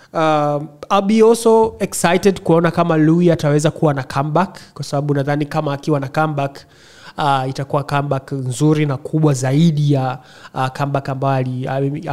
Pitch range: 135-160 Hz